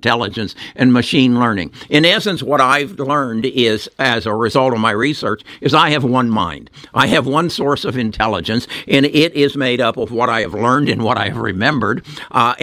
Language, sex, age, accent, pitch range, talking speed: English, male, 60-79, American, 115-145 Hz, 205 wpm